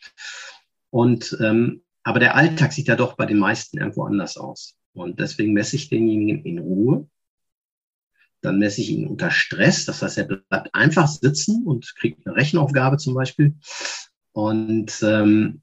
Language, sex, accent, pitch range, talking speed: German, male, German, 110-150 Hz, 155 wpm